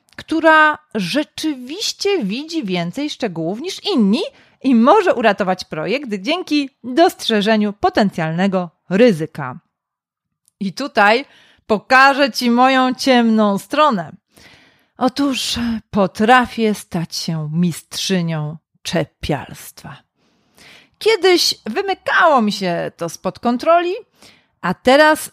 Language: Polish